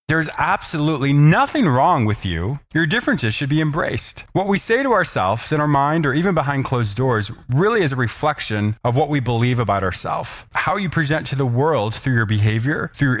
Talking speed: 200 wpm